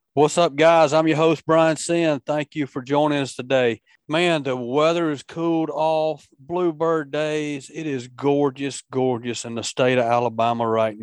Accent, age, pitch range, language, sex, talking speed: American, 40-59, 115-150 Hz, English, male, 175 wpm